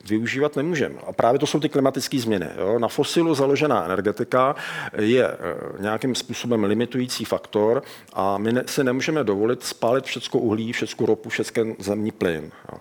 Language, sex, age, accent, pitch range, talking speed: Czech, male, 40-59, native, 105-130 Hz, 155 wpm